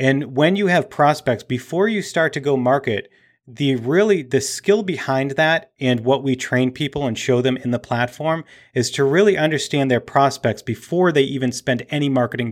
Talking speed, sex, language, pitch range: 190 wpm, male, English, 120-145 Hz